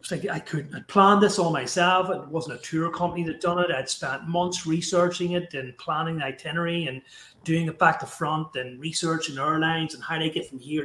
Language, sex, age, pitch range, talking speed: English, male, 30-49, 130-165 Hz, 230 wpm